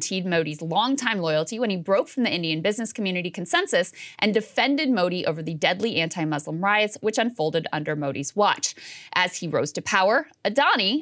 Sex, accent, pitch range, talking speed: female, American, 170-250 Hz, 175 wpm